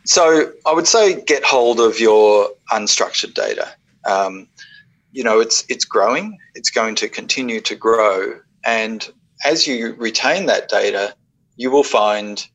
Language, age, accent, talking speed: English, 40-59, Australian, 150 wpm